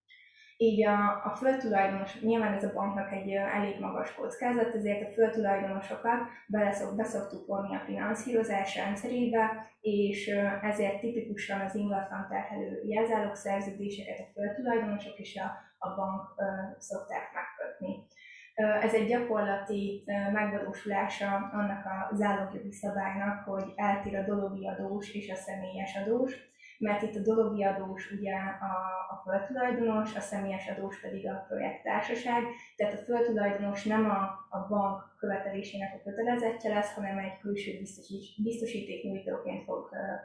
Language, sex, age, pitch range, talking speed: Hungarian, female, 10-29, 195-220 Hz, 135 wpm